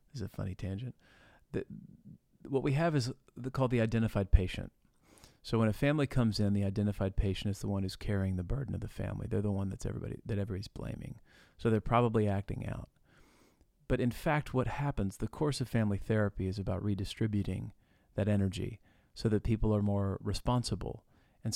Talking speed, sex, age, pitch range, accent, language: 190 wpm, male, 40-59, 100-120 Hz, American, English